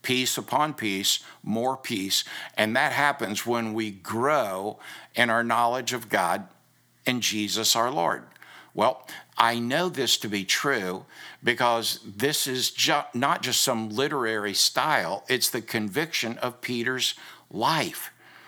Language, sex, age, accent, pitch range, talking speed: English, male, 60-79, American, 110-135 Hz, 135 wpm